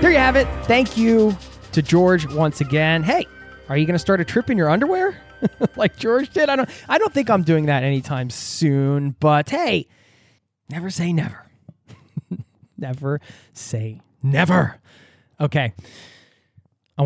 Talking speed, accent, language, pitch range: 150 wpm, American, English, 120-165 Hz